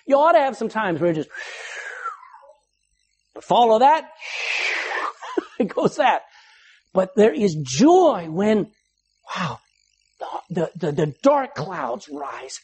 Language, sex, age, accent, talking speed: English, male, 60-79, American, 125 wpm